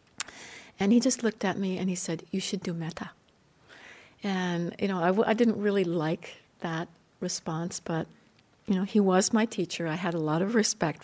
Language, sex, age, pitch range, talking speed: English, female, 60-79, 175-210 Hz, 200 wpm